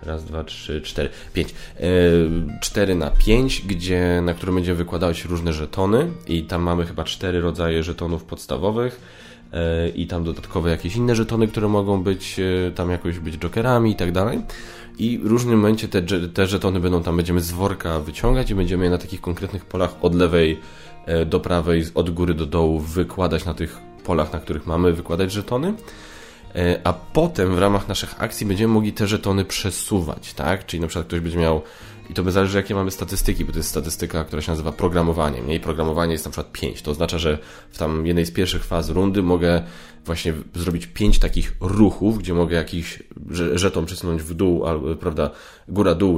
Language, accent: Polish, native